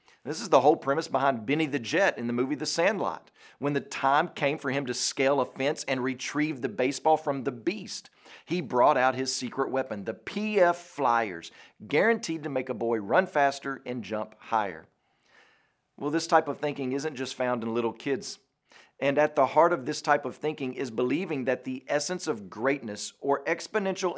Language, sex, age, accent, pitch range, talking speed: English, male, 40-59, American, 125-170 Hz, 195 wpm